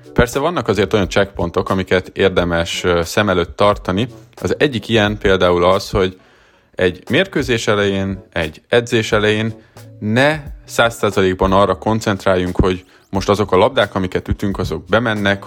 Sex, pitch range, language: male, 95-110 Hz, Hungarian